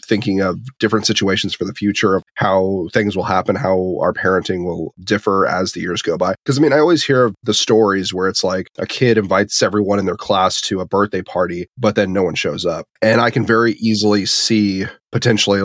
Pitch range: 90-105 Hz